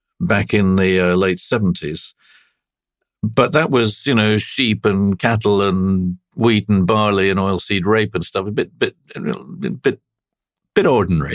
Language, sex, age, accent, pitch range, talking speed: English, male, 50-69, British, 95-115 Hz, 165 wpm